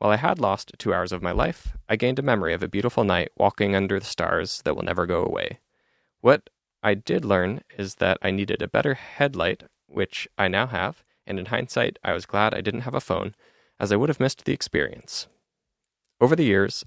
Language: English